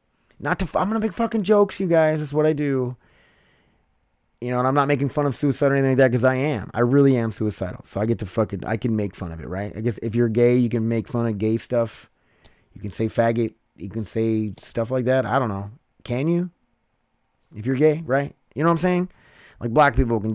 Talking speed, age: 255 wpm, 20-39